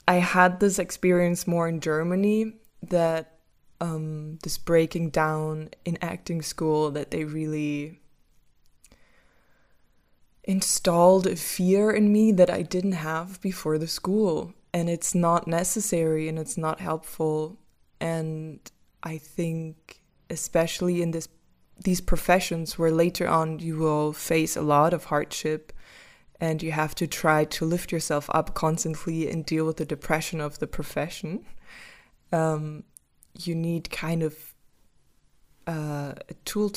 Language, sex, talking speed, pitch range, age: English, female, 135 wpm, 155-175 Hz, 20-39